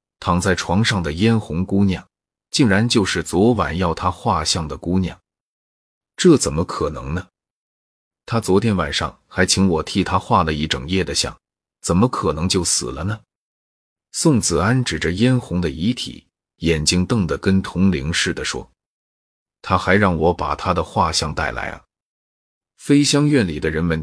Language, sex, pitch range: Chinese, male, 80-105 Hz